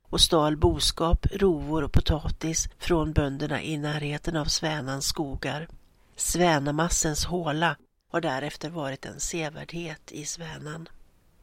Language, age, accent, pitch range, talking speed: Swedish, 60-79, native, 150-175 Hz, 115 wpm